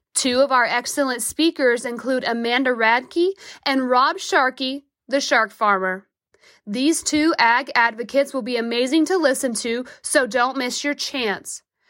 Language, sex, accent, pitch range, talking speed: English, female, American, 240-300 Hz, 145 wpm